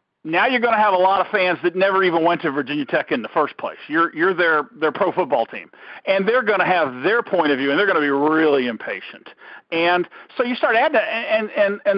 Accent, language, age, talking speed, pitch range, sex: American, English, 50-69, 260 wpm, 160-225 Hz, male